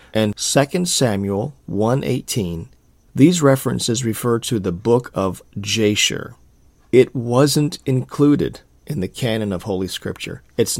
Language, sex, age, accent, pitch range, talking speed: English, male, 40-59, American, 105-135 Hz, 130 wpm